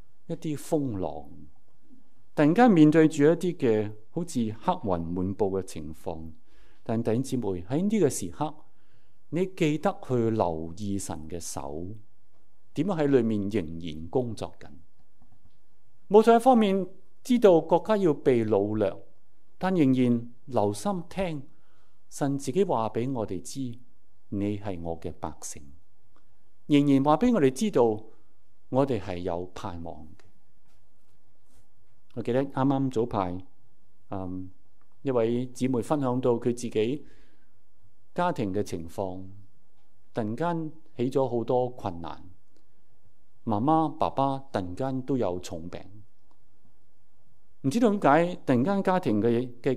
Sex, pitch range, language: male, 100-135 Hz, Chinese